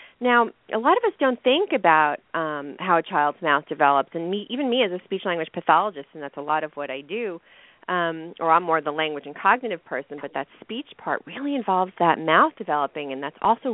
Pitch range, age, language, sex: 155-210 Hz, 40-59, English, female